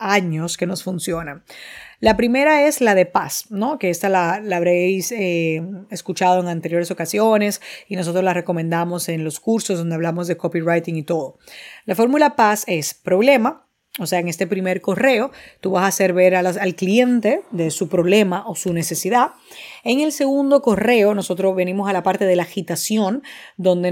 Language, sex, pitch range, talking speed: Spanish, female, 180-230 Hz, 185 wpm